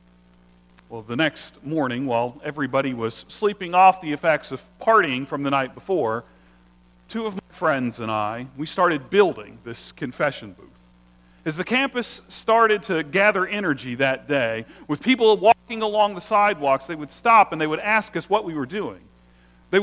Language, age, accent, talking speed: English, 40-59, American, 175 wpm